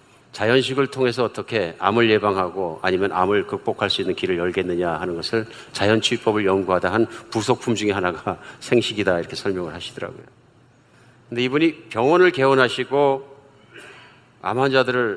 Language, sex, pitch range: Korean, male, 110-135 Hz